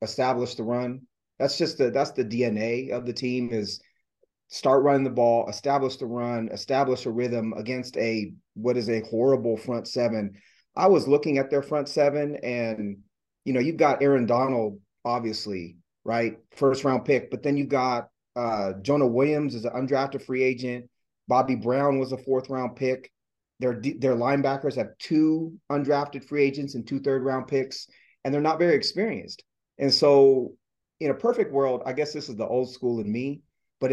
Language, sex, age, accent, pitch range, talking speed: English, male, 30-49, American, 115-140 Hz, 180 wpm